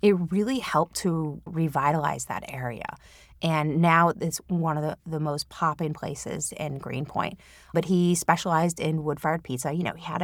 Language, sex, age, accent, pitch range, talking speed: English, female, 30-49, American, 150-190 Hz, 170 wpm